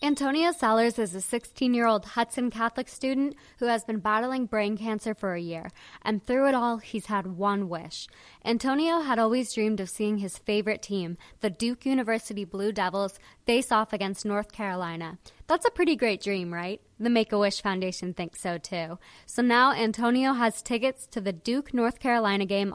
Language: English